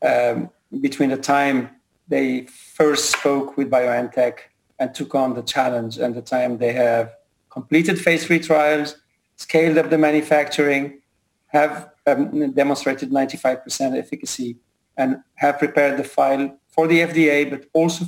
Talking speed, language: 140 wpm, English